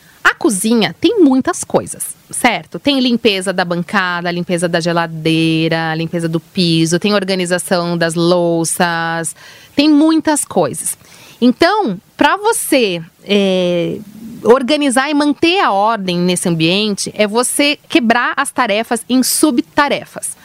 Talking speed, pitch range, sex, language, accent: 115 wpm, 200-280 Hz, female, Portuguese, Brazilian